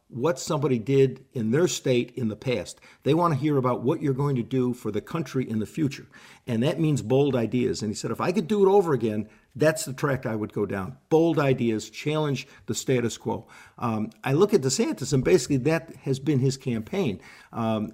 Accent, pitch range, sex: American, 120-150 Hz, male